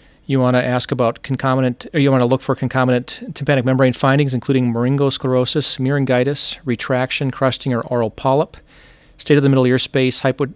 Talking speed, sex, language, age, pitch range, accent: 175 wpm, male, English, 40-59, 120-135 Hz, American